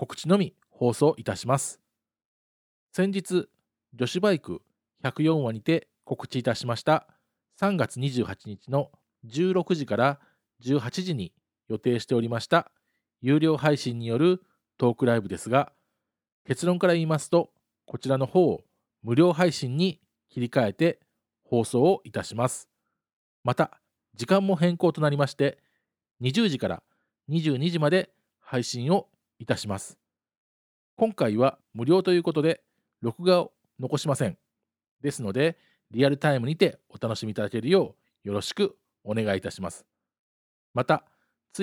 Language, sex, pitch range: Japanese, male, 120-175 Hz